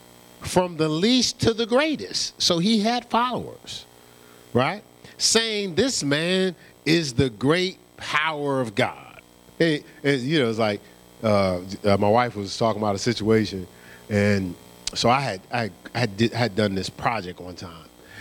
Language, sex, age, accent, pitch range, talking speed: English, male, 40-59, American, 90-150 Hz, 165 wpm